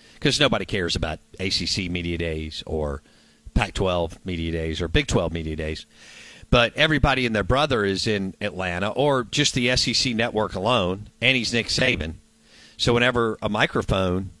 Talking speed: 160 wpm